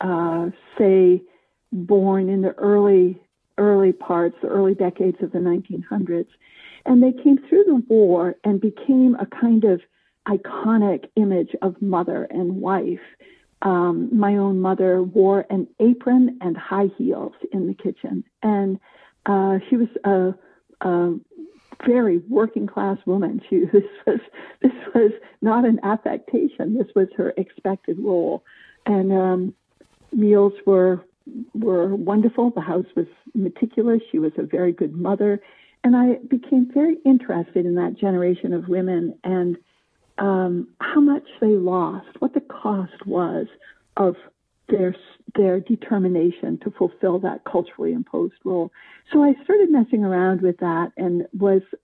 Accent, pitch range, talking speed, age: American, 185-235 Hz, 140 wpm, 50-69